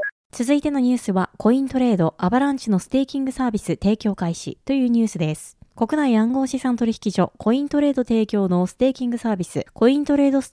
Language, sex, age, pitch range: Japanese, female, 20-39, 195-275 Hz